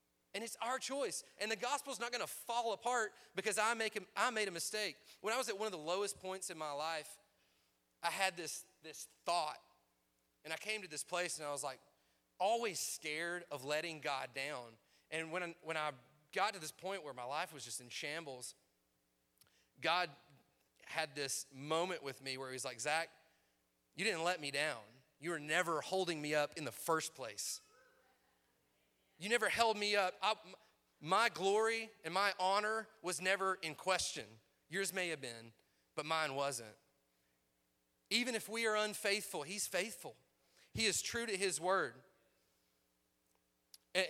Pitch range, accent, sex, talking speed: 130-190 Hz, American, male, 175 wpm